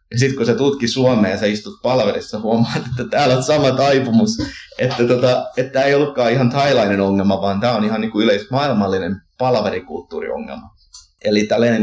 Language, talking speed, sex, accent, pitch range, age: Finnish, 165 wpm, male, native, 95-135 Hz, 30-49